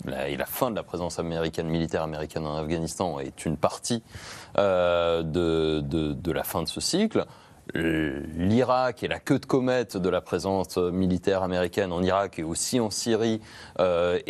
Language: French